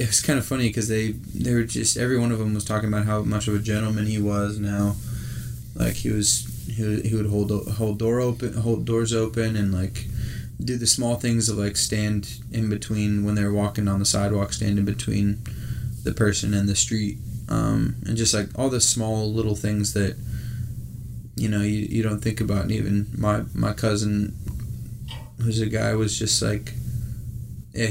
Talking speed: 200 wpm